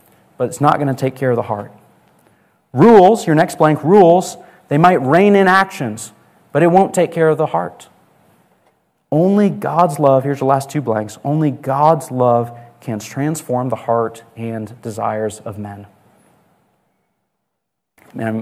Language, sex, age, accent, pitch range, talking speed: English, male, 30-49, American, 120-150 Hz, 155 wpm